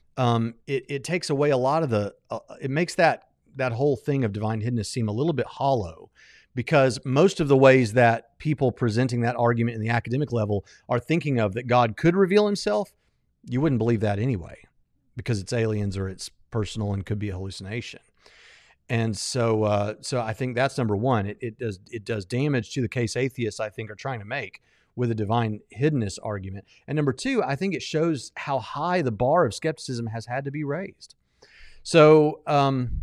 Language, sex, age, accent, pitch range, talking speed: English, male, 40-59, American, 110-140 Hz, 205 wpm